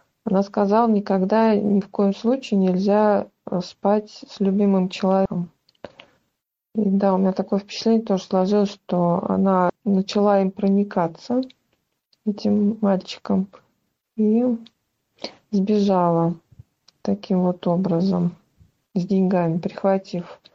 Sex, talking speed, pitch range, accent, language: female, 100 wpm, 185-220 Hz, native, Russian